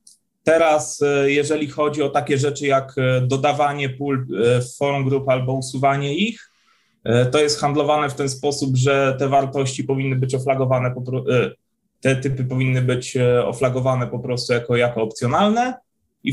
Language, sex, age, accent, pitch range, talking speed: Polish, male, 20-39, native, 125-145 Hz, 140 wpm